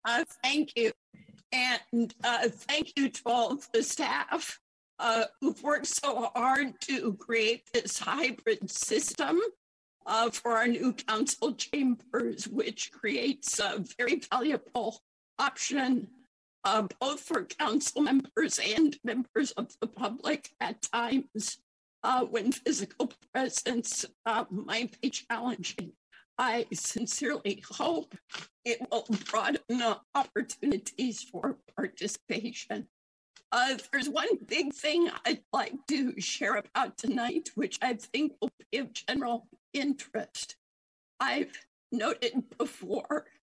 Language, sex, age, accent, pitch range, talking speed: English, female, 50-69, American, 230-285 Hz, 115 wpm